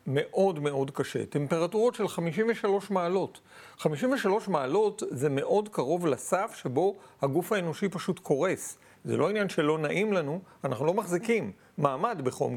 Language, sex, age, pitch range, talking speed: Hebrew, male, 50-69, 155-210 Hz, 140 wpm